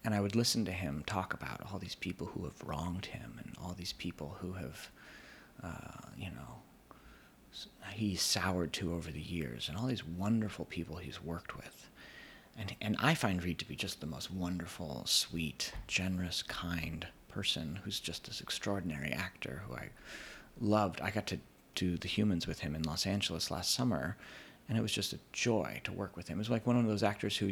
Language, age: English, 30-49